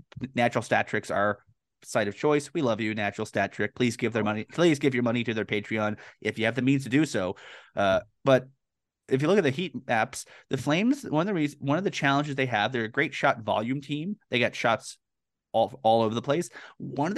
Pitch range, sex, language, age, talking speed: 120-150 Hz, male, English, 30-49, 240 wpm